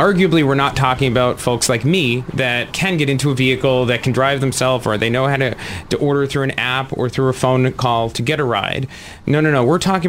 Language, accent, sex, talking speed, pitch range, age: English, American, male, 250 wpm, 115-140 Hz, 30-49